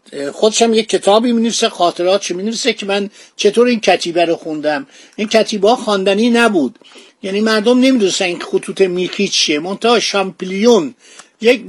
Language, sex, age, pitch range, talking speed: Persian, male, 50-69, 185-235 Hz, 145 wpm